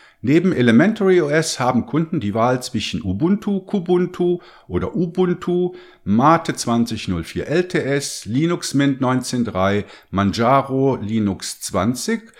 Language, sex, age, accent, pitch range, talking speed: German, male, 50-69, German, 110-175 Hz, 100 wpm